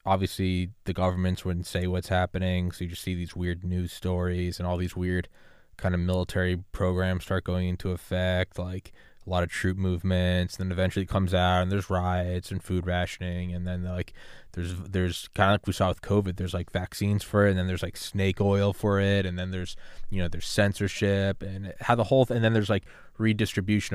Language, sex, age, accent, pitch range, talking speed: English, male, 20-39, American, 90-100 Hz, 220 wpm